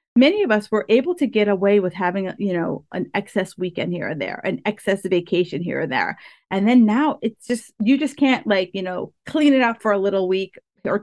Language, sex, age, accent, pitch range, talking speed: English, female, 40-59, American, 190-255 Hz, 235 wpm